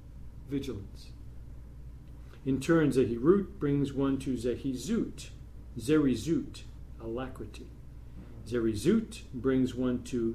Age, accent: 50-69, American